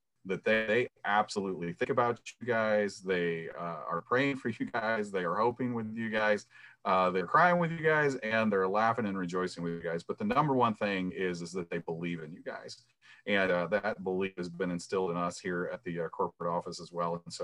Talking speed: 230 wpm